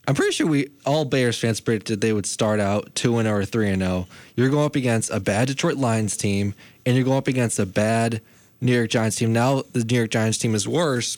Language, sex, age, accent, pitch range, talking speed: English, male, 20-39, American, 105-130 Hz, 240 wpm